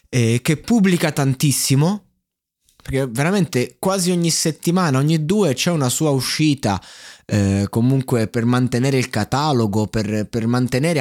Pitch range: 110-150 Hz